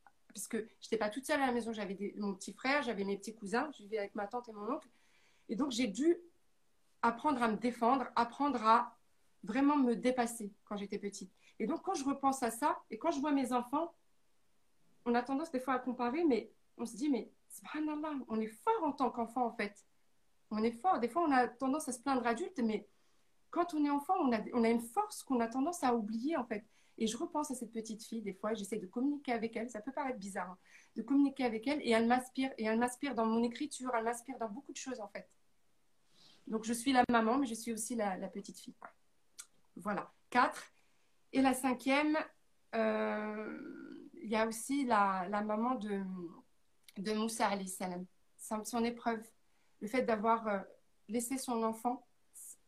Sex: female